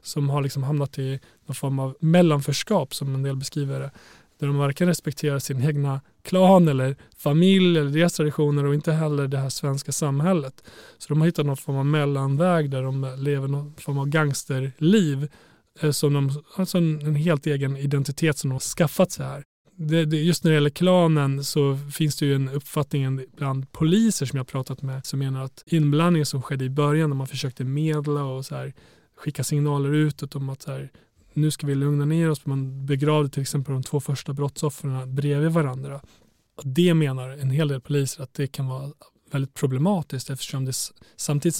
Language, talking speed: Swedish, 195 wpm